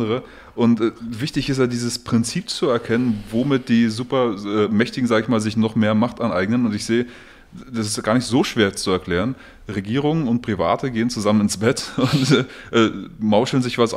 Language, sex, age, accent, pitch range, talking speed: German, male, 20-39, German, 100-120 Hz, 190 wpm